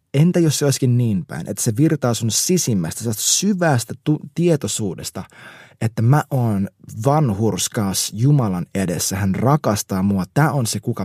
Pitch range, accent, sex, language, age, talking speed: 110-150 Hz, native, male, Finnish, 20-39, 140 wpm